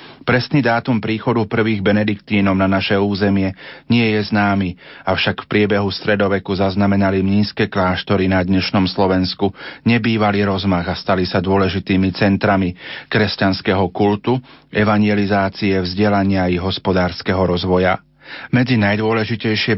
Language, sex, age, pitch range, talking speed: Slovak, male, 40-59, 95-110 Hz, 110 wpm